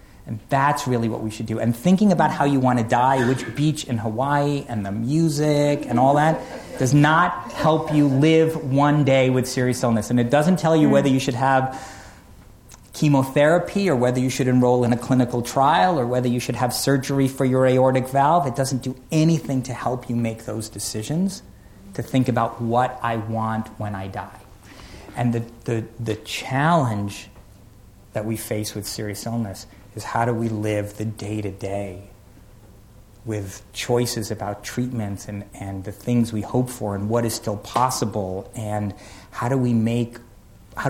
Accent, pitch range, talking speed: American, 105-130 Hz, 185 wpm